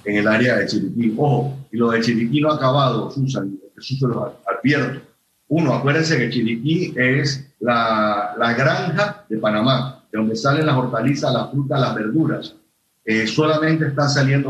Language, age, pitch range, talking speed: Spanish, 40-59, 120-150 Hz, 165 wpm